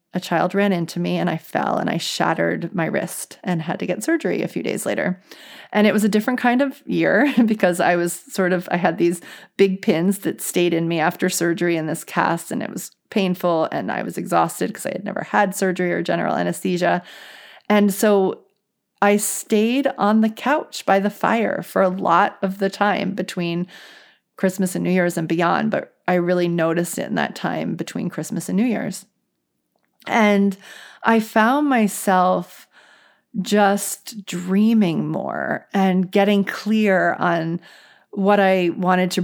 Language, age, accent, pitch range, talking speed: English, 30-49, American, 175-210 Hz, 180 wpm